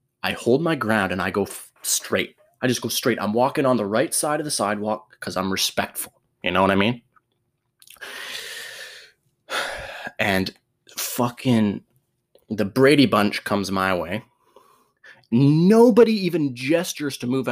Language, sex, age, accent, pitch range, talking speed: English, male, 20-39, American, 110-150 Hz, 145 wpm